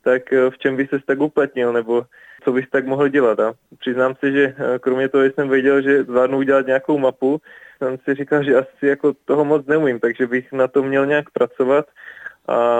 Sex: male